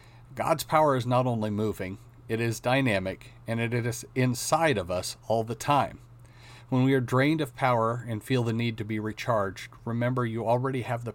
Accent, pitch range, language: American, 110-125 Hz, English